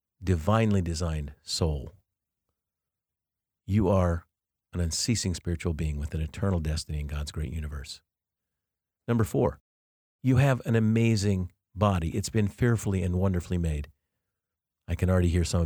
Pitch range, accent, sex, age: 80-105 Hz, American, male, 50-69